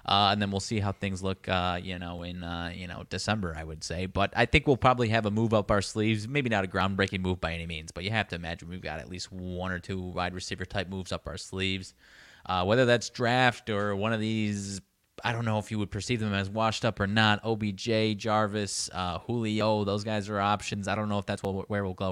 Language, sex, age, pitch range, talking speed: English, male, 20-39, 95-115 Hz, 255 wpm